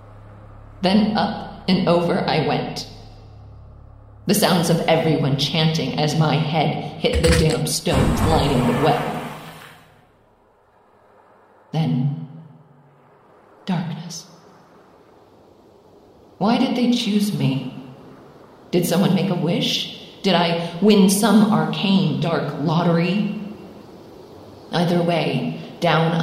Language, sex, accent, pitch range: English, female, American, 150-185 Hz